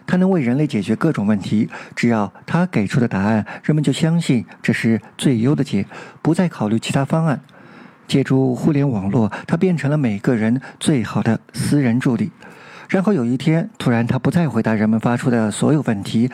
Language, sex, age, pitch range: Chinese, male, 50-69, 120-160 Hz